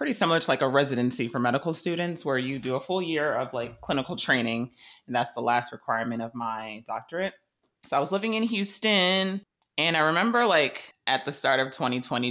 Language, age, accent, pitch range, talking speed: English, 20-39, American, 120-170 Hz, 205 wpm